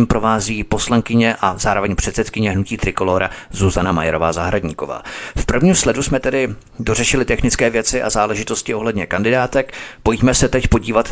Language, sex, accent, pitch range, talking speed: Czech, male, native, 100-125 Hz, 135 wpm